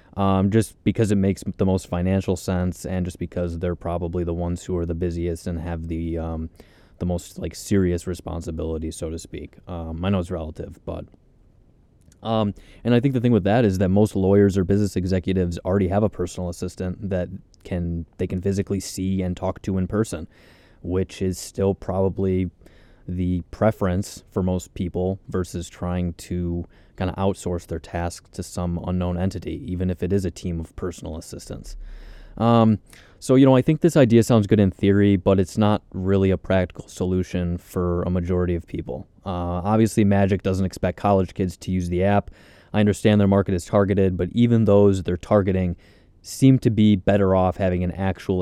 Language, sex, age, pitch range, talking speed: English, male, 20-39, 90-100 Hz, 190 wpm